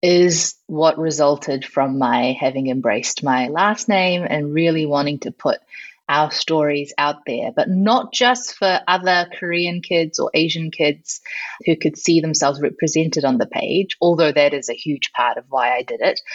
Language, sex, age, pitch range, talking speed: English, female, 30-49, 150-225 Hz, 175 wpm